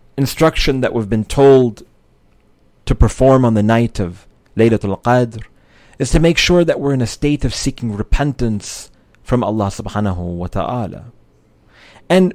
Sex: male